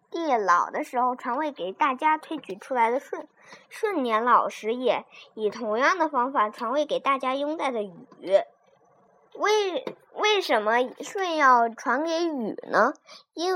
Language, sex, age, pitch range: Chinese, male, 20-39, 235-320 Hz